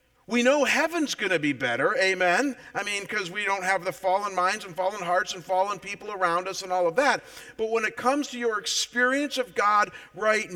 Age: 50-69